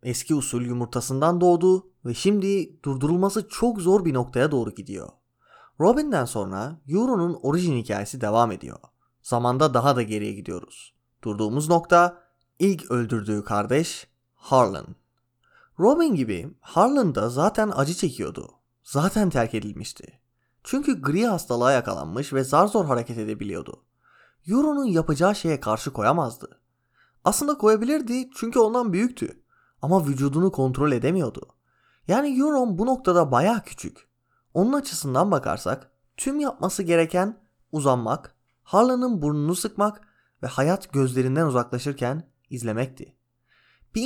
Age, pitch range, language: 30-49, 120-190 Hz, Turkish